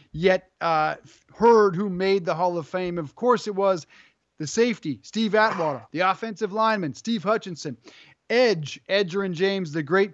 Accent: American